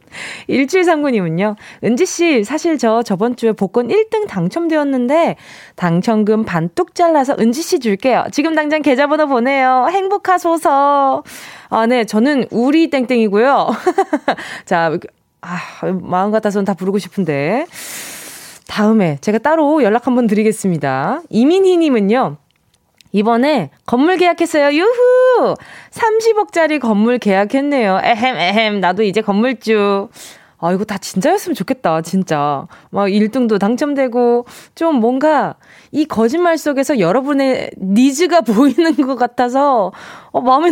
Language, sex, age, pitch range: Korean, female, 20-39, 205-300 Hz